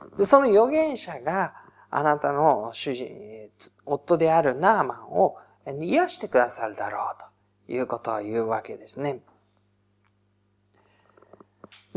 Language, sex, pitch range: Japanese, male, 130-205 Hz